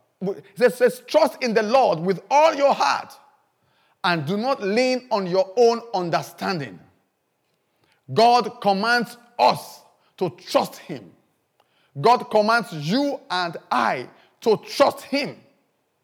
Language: English